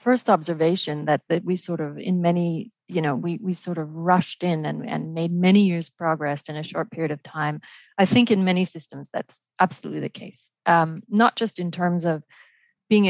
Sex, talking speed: female, 205 wpm